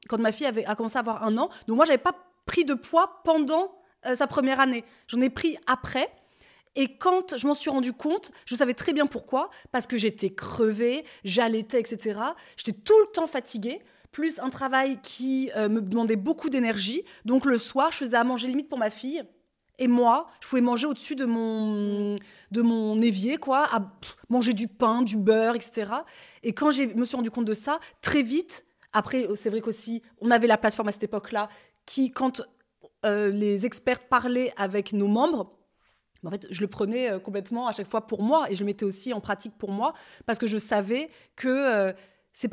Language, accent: French, French